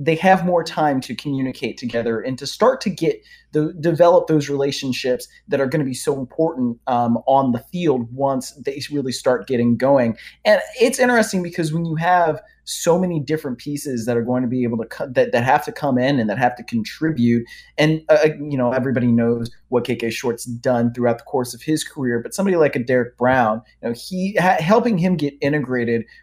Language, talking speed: English, 215 wpm